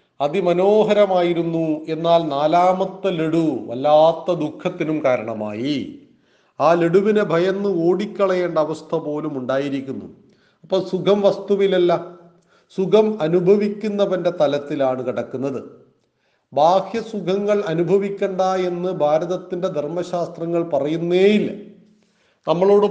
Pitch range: 165-195 Hz